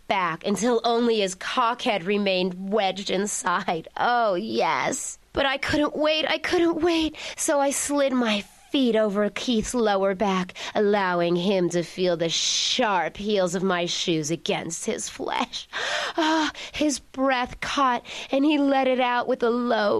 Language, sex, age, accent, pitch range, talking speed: English, female, 30-49, American, 220-310 Hz, 155 wpm